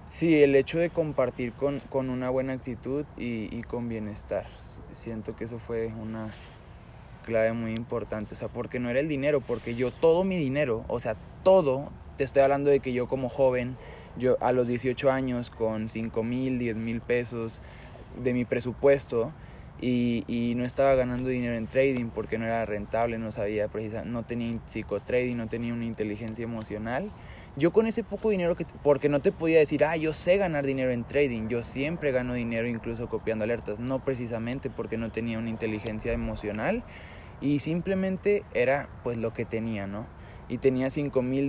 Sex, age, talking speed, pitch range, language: male, 20-39, 185 wpm, 115-135 Hz, Spanish